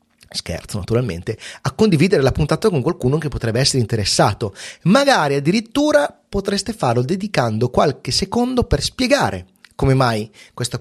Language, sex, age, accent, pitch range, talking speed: Italian, male, 30-49, native, 115-165 Hz, 135 wpm